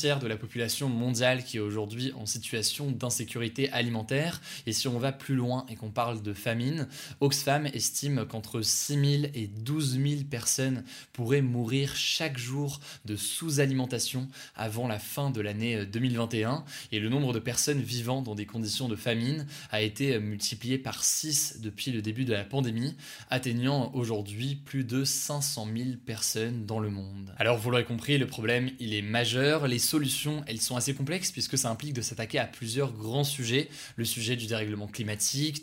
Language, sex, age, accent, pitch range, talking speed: French, male, 20-39, French, 115-140 Hz, 175 wpm